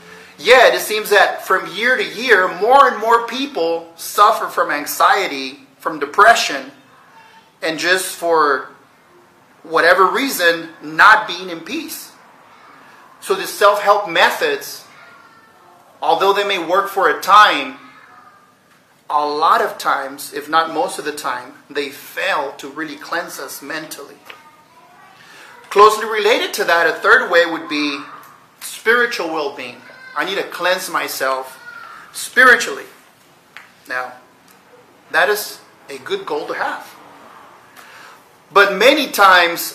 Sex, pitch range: male, 160-220 Hz